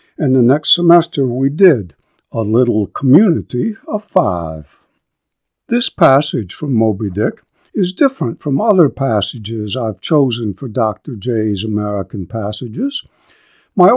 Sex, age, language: male, 60-79, English